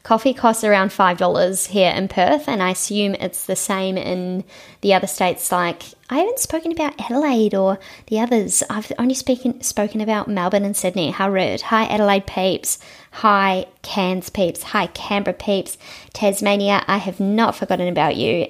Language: English